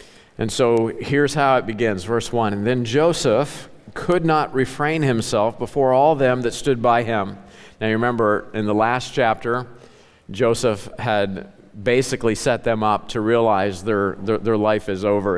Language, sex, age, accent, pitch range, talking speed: English, male, 50-69, American, 105-135 Hz, 170 wpm